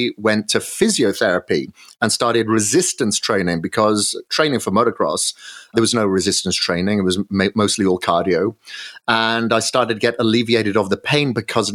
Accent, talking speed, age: British, 160 wpm, 30-49